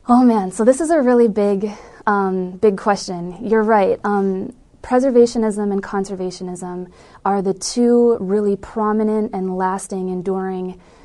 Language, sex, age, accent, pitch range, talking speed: English, female, 20-39, American, 185-220 Hz, 135 wpm